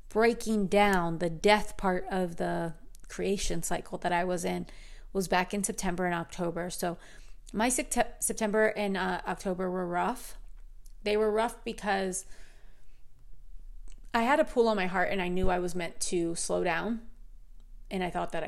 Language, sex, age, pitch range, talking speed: English, female, 30-49, 175-205 Hz, 165 wpm